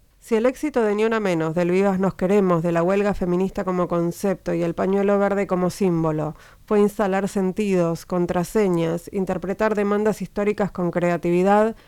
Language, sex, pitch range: Spanish, female, 180-225 Hz